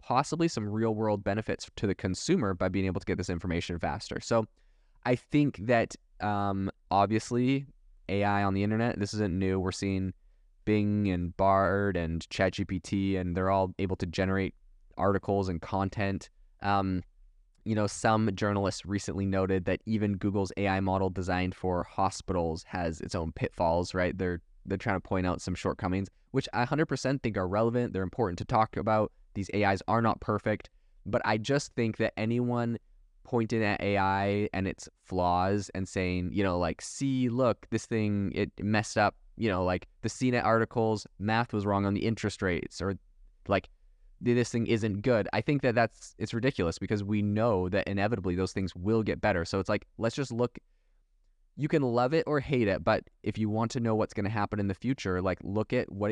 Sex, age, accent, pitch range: male, 20-39, American, 95-110 Hz